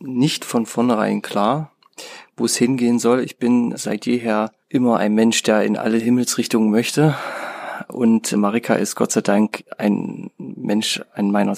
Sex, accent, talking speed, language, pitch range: male, German, 155 wpm, German, 105-120 Hz